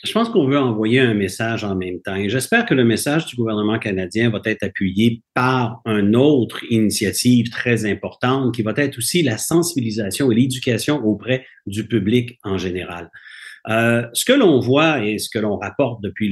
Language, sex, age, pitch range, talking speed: French, male, 50-69, 105-140 Hz, 190 wpm